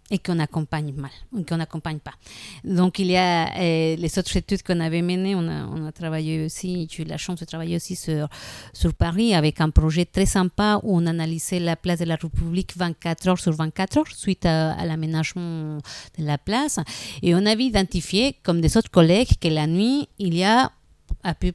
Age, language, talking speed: 50-69, French, 210 wpm